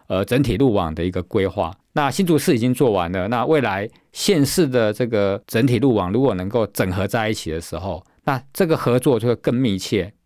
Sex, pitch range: male, 100-135 Hz